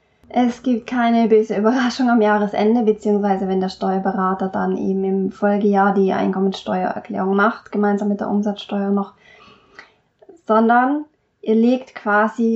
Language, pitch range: German, 205-235 Hz